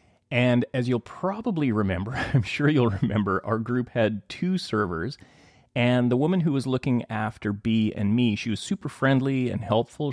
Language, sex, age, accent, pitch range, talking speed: English, male, 30-49, American, 110-145 Hz, 180 wpm